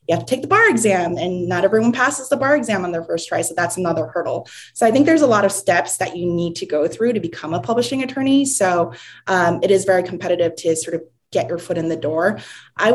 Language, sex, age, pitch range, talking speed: English, female, 20-39, 165-215 Hz, 265 wpm